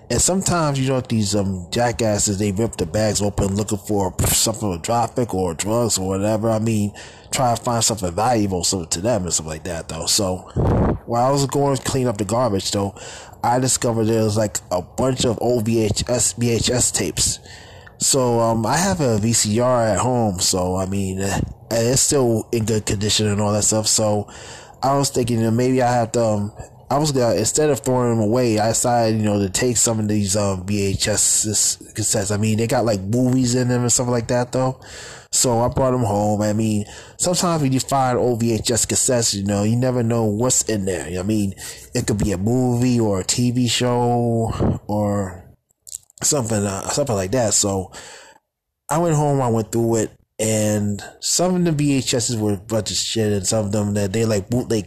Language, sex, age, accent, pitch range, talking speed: English, male, 20-39, American, 105-125 Hz, 205 wpm